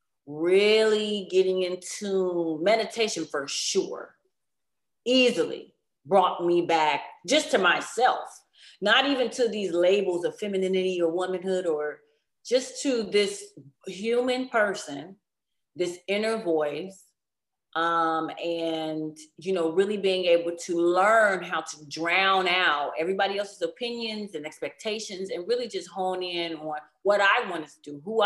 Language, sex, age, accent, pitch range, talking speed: English, female, 30-49, American, 160-205 Hz, 130 wpm